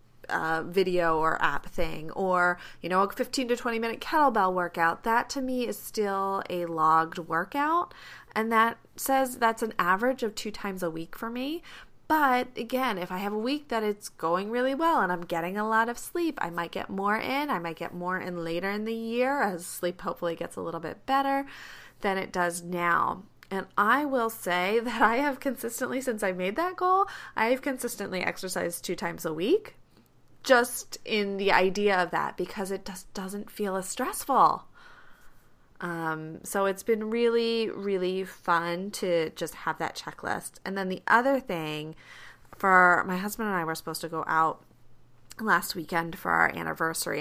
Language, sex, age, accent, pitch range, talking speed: English, female, 30-49, American, 175-235 Hz, 185 wpm